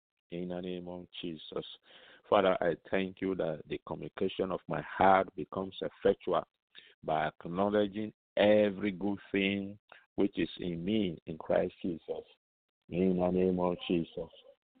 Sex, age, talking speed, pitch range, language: male, 50-69, 140 wpm, 90-100 Hz, English